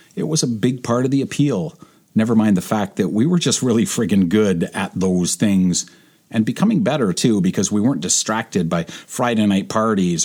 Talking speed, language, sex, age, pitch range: 200 wpm, English, male, 40-59, 100-140 Hz